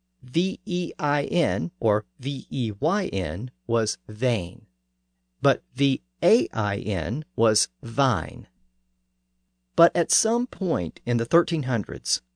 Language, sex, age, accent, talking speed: English, male, 50-69, American, 80 wpm